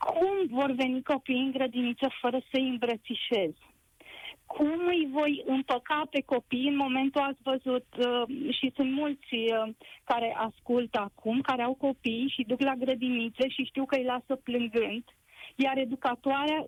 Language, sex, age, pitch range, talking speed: Romanian, female, 30-49, 250-290 Hz, 155 wpm